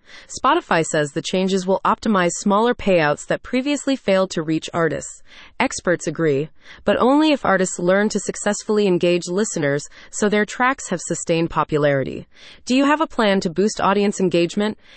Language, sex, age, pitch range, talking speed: English, female, 30-49, 170-220 Hz, 160 wpm